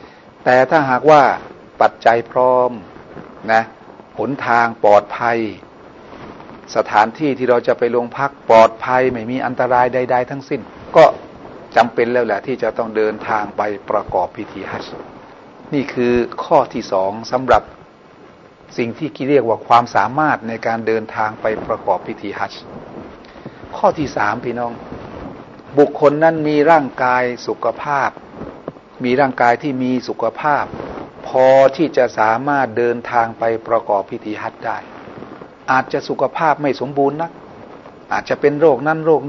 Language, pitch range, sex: Thai, 115-130 Hz, male